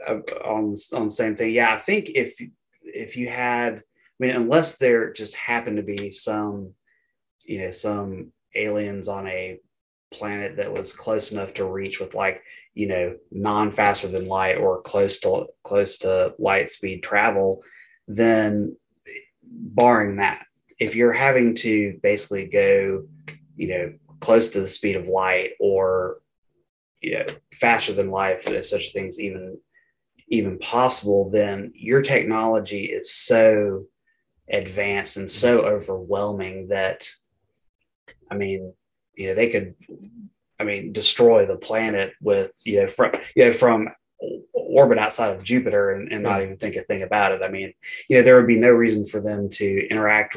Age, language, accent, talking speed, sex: 20-39, English, American, 155 wpm, male